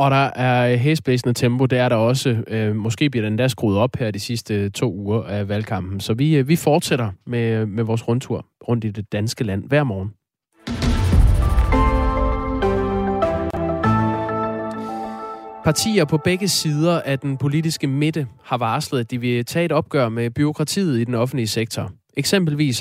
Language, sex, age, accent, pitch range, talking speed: Danish, male, 20-39, native, 110-145 Hz, 155 wpm